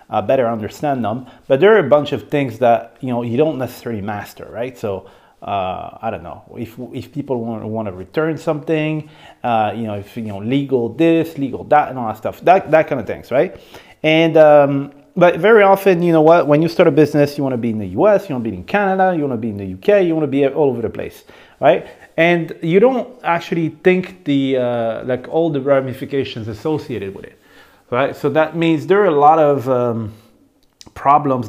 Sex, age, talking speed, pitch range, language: male, 30-49, 225 wpm, 120-155 Hz, English